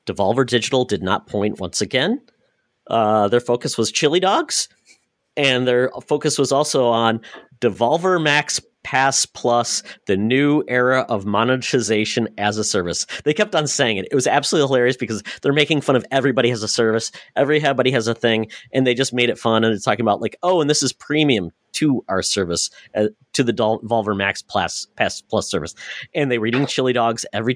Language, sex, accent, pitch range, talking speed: English, male, American, 110-135 Hz, 190 wpm